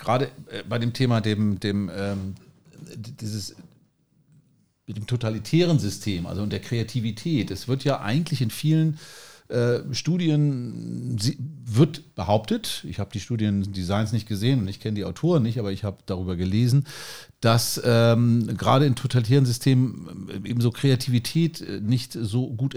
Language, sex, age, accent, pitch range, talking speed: German, male, 50-69, German, 105-140 Hz, 130 wpm